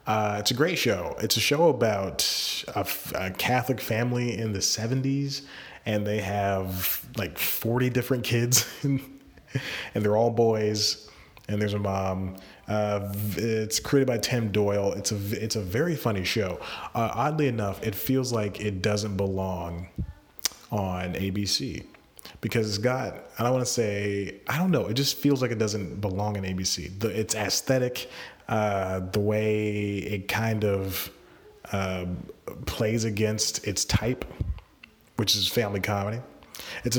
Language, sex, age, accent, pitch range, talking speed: English, male, 30-49, American, 100-120 Hz, 155 wpm